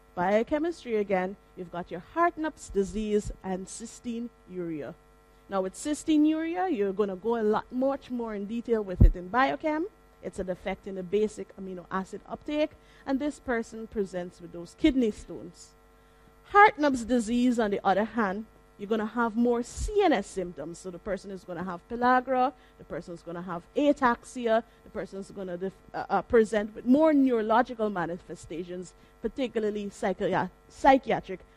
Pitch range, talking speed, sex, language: 190-265 Hz, 160 wpm, female, English